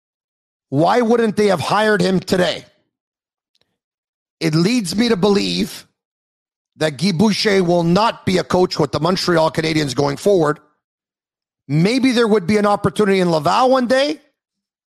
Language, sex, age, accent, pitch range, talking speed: English, male, 50-69, American, 170-225 Hz, 145 wpm